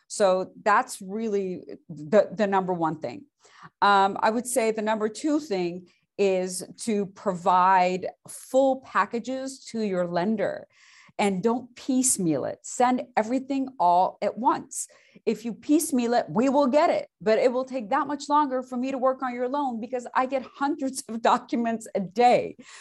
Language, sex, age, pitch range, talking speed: English, female, 40-59, 190-245 Hz, 165 wpm